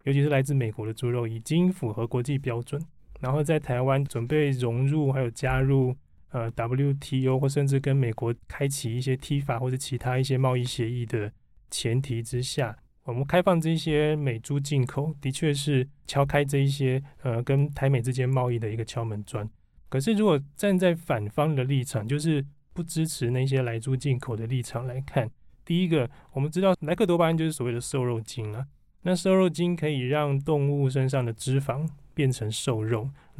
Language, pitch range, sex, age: Chinese, 120-150 Hz, male, 20-39